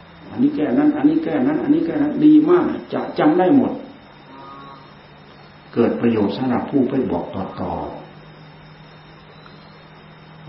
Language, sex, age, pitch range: Thai, male, 60-79, 110-155 Hz